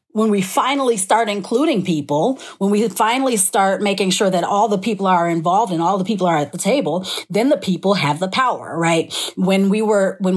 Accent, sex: American, female